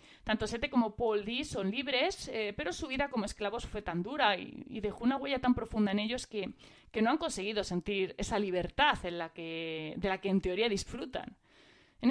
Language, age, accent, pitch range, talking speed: Spanish, 30-49, Spanish, 190-260 Hz, 200 wpm